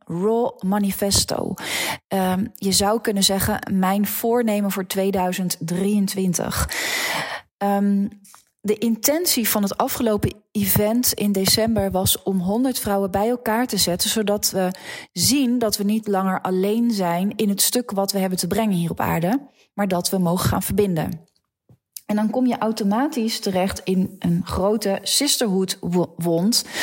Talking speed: 145 wpm